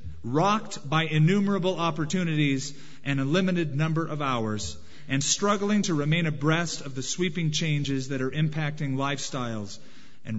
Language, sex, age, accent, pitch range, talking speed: English, male, 40-59, American, 135-190 Hz, 140 wpm